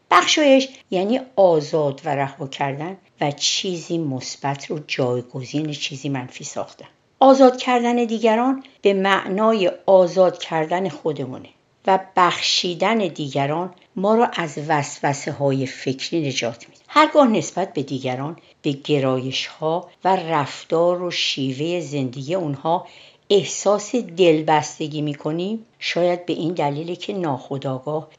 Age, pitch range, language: 60-79, 140-190 Hz, Persian